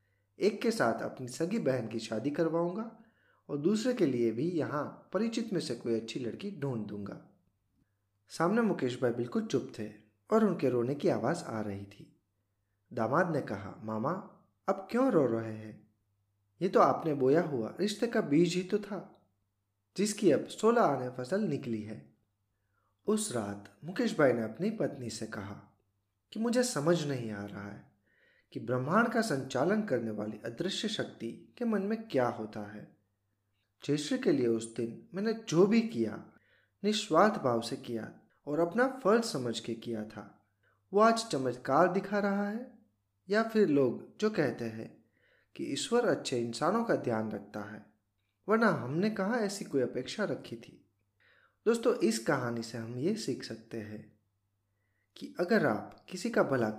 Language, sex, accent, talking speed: Hindi, male, native, 165 wpm